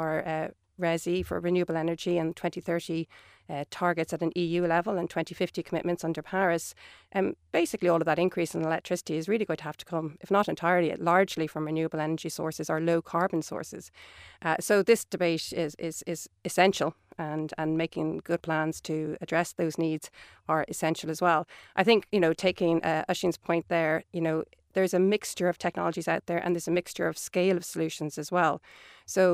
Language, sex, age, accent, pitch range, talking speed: English, female, 40-59, Irish, 160-180 Hz, 195 wpm